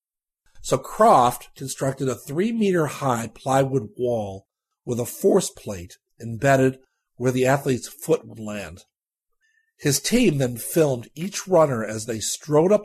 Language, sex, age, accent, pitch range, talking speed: English, male, 50-69, American, 110-145 Hz, 130 wpm